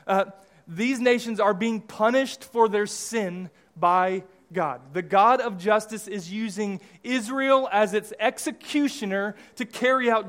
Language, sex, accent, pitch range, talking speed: English, male, American, 160-230 Hz, 140 wpm